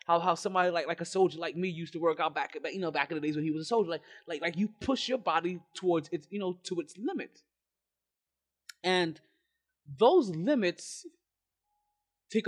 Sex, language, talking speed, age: male, English, 205 wpm, 20-39